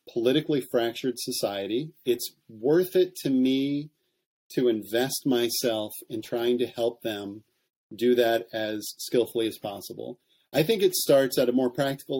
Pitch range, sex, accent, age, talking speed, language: 115-140 Hz, male, American, 30-49, 150 wpm, English